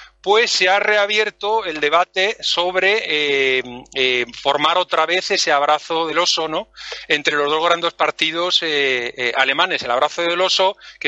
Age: 40-59